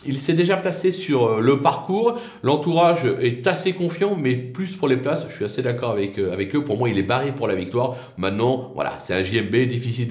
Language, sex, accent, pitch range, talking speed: French, male, French, 120-160 Hz, 225 wpm